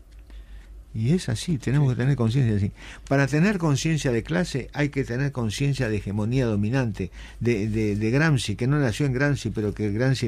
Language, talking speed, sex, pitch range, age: Spanish, 185 wpm, male, 105-145 Hz, 50-69